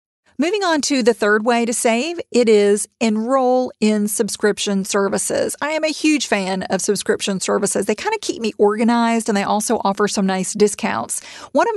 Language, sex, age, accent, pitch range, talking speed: English, female, 40-59, American, 200-235 Hz, 190 wpm